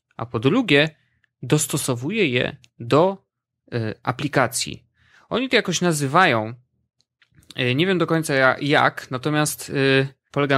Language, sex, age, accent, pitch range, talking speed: Polish, male, 20-39, native, 125-160 Hz, 100 wpm